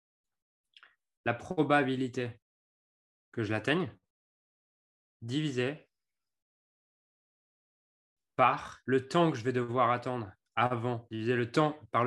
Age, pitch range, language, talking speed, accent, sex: 20-39, 120-155 Hz, French, 95 wpm, French, male